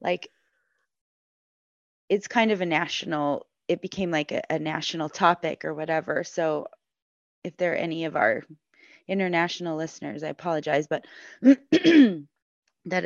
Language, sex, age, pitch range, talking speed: English, female, 30-49, 160-200 Hz, 130 wpm